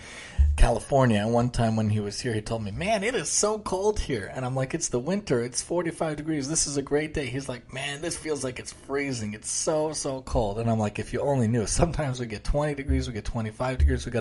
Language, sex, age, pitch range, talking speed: English, male, 20-39, 110-135 Hz, 260 wpm